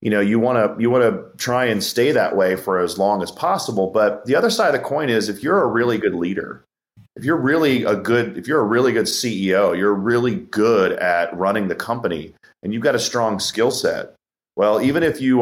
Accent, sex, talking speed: American, male, 235 wpm